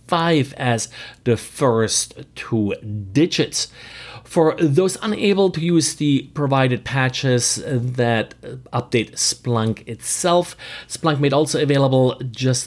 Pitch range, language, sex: 115-145 Hz, English, male